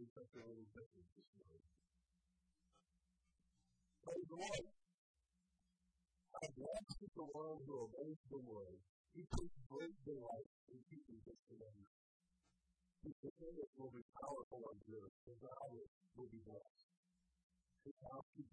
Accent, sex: American, female